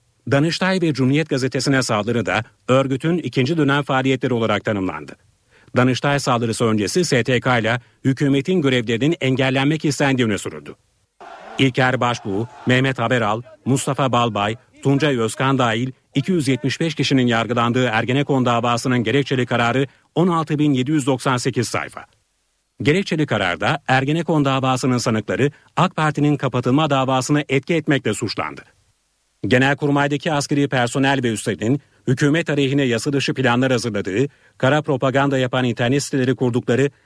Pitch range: 120-145 Hz